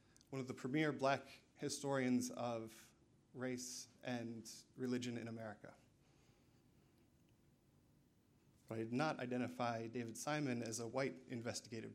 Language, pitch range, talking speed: English, 115-140 Hz, 110 wpm